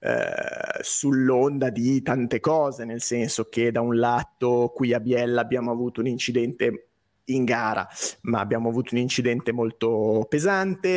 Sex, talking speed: male, 150 wpm